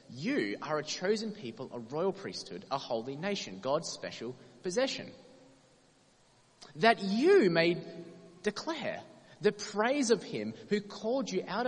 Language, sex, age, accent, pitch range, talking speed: English, male, 20-39, Australian, 130-195 Hz, 135 wpm